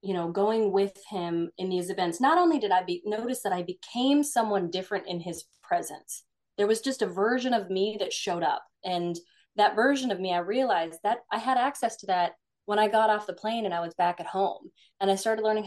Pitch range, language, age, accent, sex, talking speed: 180-230 Hz, English, 20-39, American, female, 235 wpm